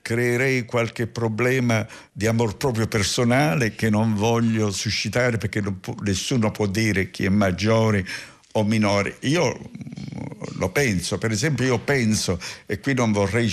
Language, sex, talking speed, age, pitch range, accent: Italian, male, 140 wpm, 60-79, 105-125 Hz, native